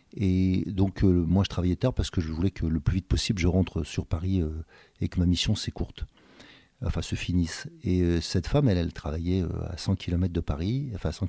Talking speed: 245 wpm